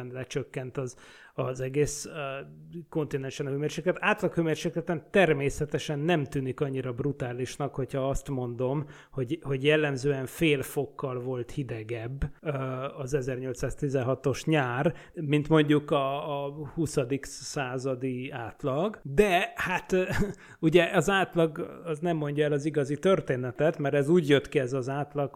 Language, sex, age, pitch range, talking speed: Hungarian, male, 30-49, 135-160 Hz, 135 wpm